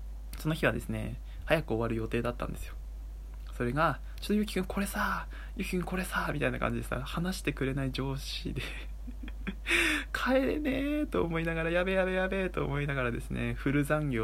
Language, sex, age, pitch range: Japanese, male, 20-39, 110-155 Hz